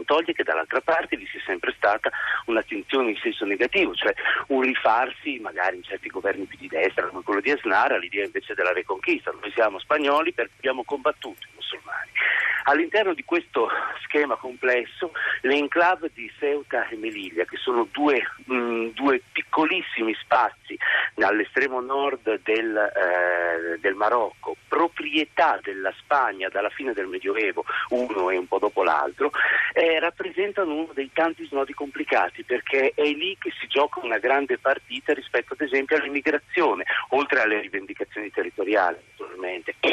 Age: 40-59